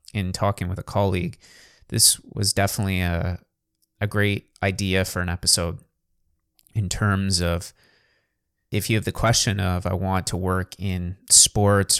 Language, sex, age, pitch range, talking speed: English, male, 20-39, 90-100 Hz, 150 wpm